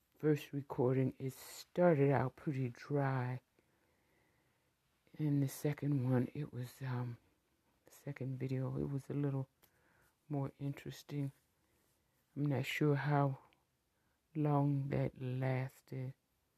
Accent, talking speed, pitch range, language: American, 110 wpm, 130-145 Hz, English